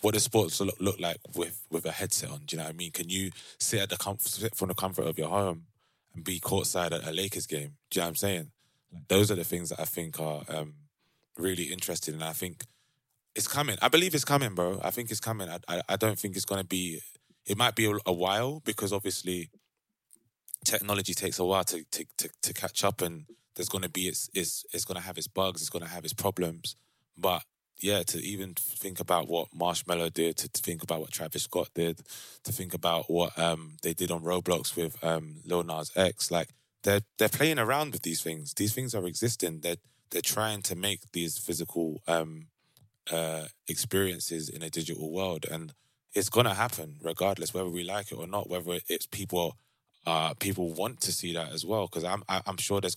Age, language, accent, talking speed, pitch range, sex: 20-39, English, British, 220 wpm, 85-100 Hz, male